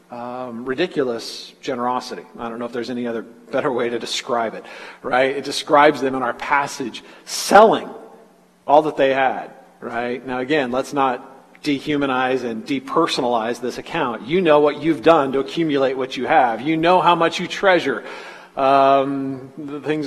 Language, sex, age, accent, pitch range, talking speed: English, male, 40-59, American, 135-200 Hz, 165 wpm